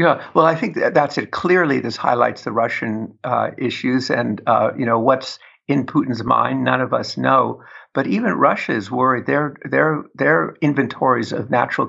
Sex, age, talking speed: male, 60-79, 180 wpm